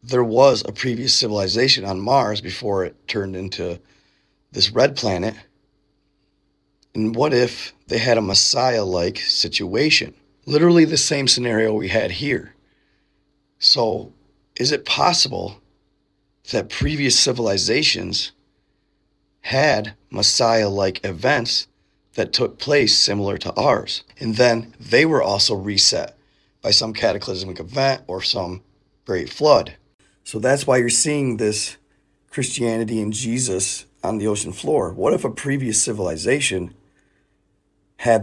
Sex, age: male, 30-49